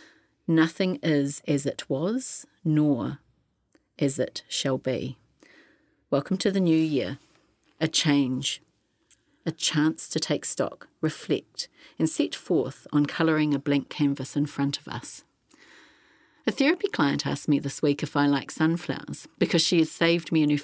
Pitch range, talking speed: 145-180 Hz, 155 wpm